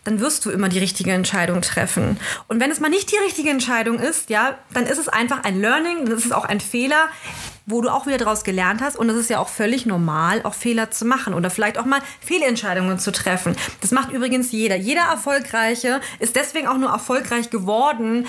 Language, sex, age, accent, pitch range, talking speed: German, female, 30-49, German, 215-265 Hz, 215 wpm